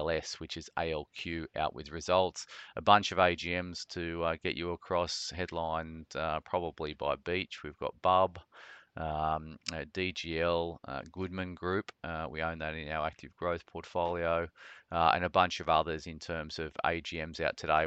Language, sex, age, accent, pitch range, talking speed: English, male, 30-49, Australian, 80-90 Hz, 165 wpm